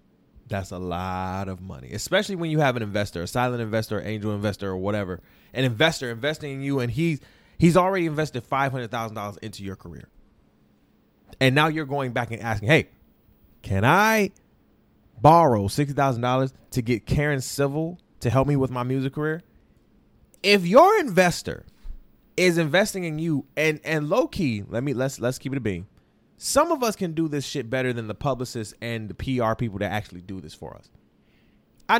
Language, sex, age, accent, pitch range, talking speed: English, male, 20-39, American, 110-155 Hz, 190 wpm